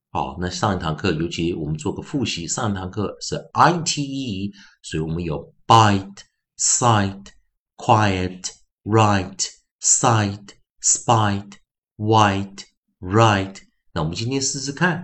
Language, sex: Chinese, male